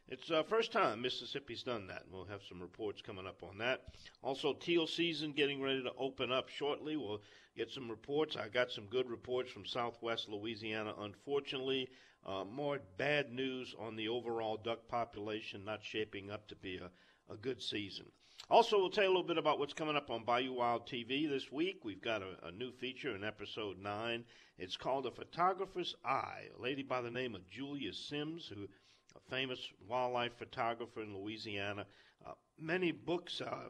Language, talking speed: English, 190 wpm